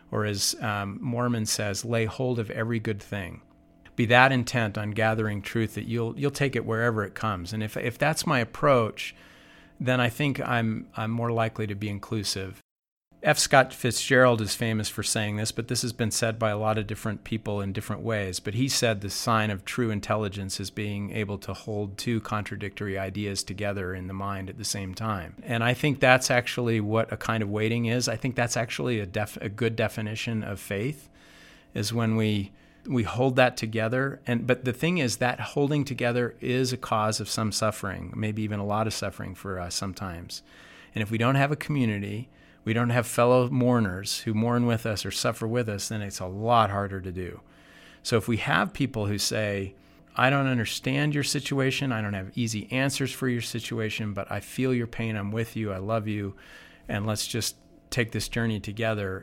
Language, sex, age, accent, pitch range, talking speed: English, male, 40-59, American, 100-120 Hz, 205 wpm